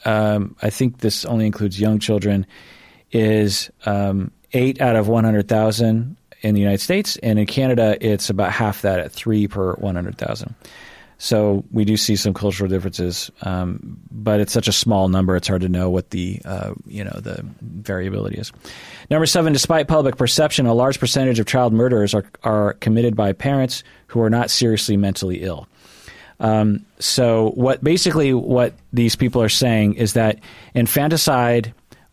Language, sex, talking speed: English, male, 165 wpm